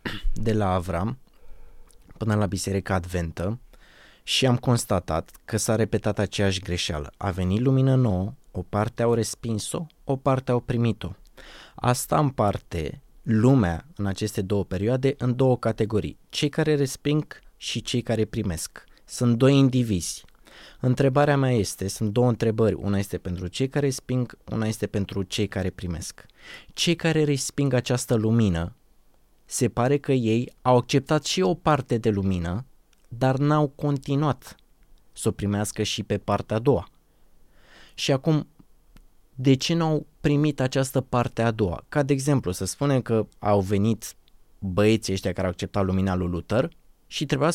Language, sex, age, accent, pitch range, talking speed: Romanian, male, 20-39, native, 100-140 Hz, 150 wpm